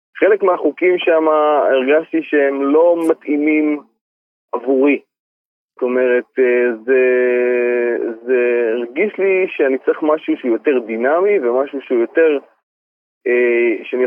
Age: 30-49